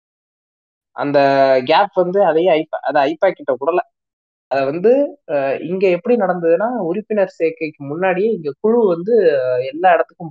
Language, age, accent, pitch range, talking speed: Tamil, 20-39, native, 145-205 Hz, 120 wpm